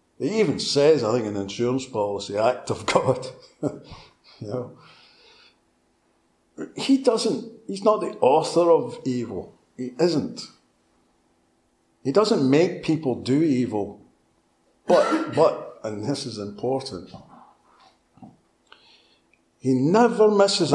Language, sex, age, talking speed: English, male, 60-79, 105 wpm